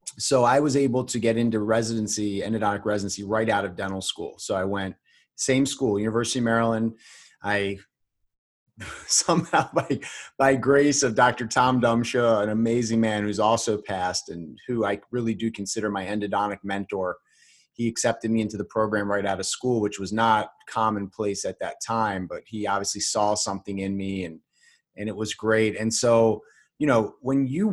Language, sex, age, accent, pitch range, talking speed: English, male, 30-49, American, 105-125 Hz, 175 wpm